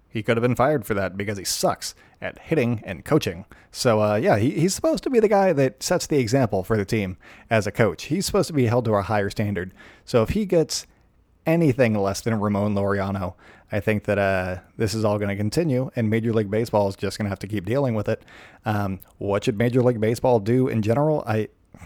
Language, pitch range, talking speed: English, 100-130 Hz, 235 wpm